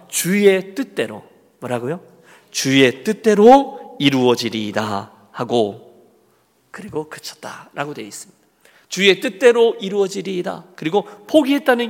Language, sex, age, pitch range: Korean, male, 40-59, 135-215 Hz